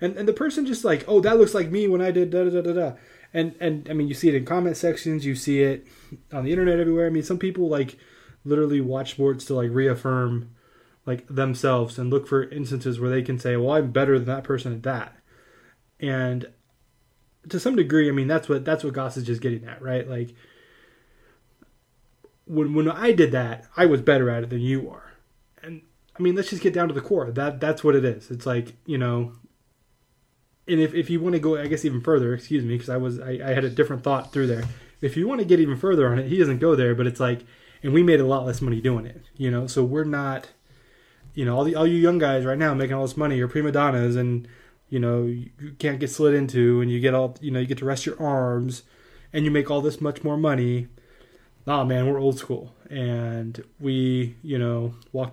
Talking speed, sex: 245 wpm, male